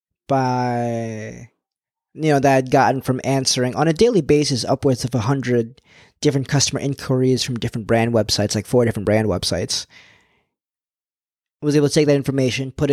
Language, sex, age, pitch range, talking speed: English, male, 20-39, 120-145 Hz, 165 wpm